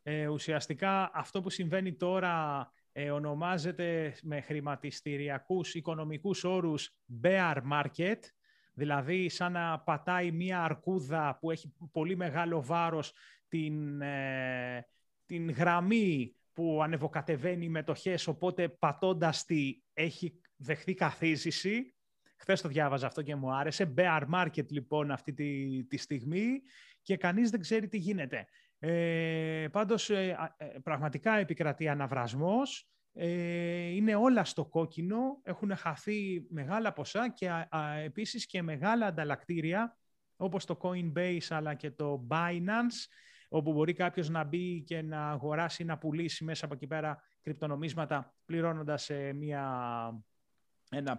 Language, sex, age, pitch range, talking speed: Greek, male, 30-49, 150-180 Hz, 120 wpm